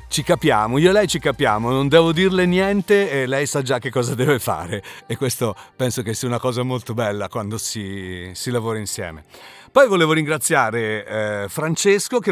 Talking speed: 190 wpm